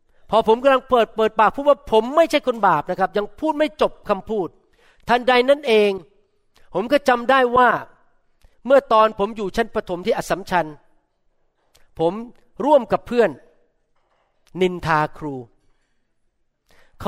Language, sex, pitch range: Thai, male, 150-215 Hz